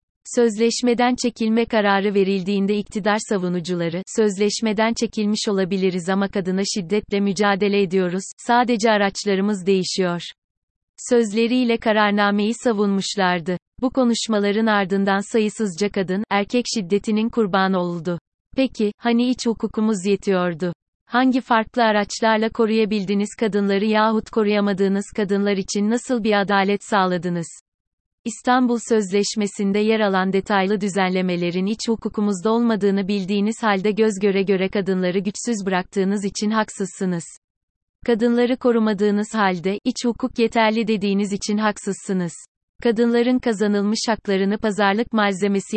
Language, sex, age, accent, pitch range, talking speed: Turkish, female, 30-49, native, 195-225 Hz, 105 wpm